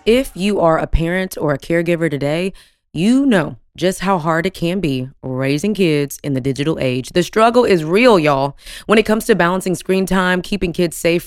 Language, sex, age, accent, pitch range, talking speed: English, female, 20-39, American, 155-195 Hz, 200 wpm